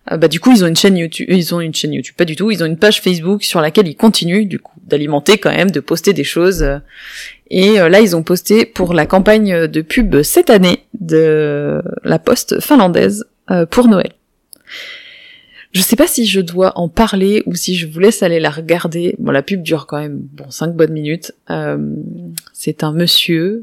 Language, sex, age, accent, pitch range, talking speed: French, female, 20-39, French, 155-215 Hz, 215 wpm